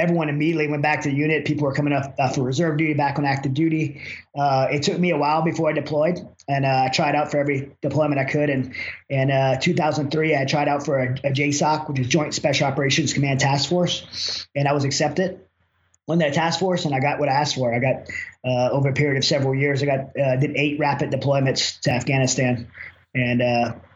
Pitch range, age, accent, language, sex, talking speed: 140-155 Hz, 20-39, American, English, male, 230 wpm